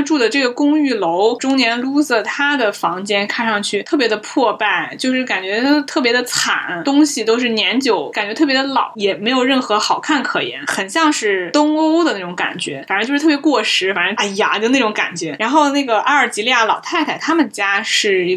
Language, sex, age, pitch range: Chinese, female, 20-39, 205-280 Hz